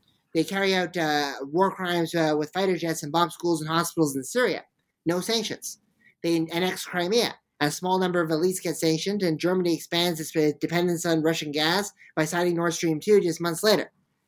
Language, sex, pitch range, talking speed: English, male, 160-185 Hz, 190 wpm